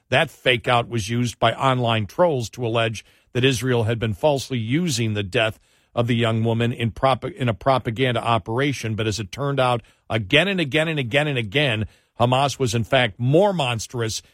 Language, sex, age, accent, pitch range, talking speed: English, male, 50-69, American, 110-135 Hz, 185 wpm